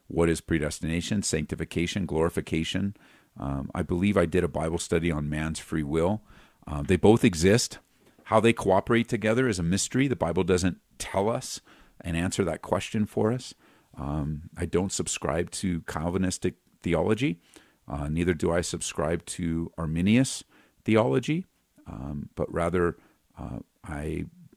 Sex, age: male, 50-69